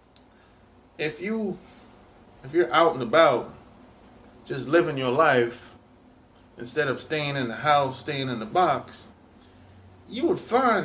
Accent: American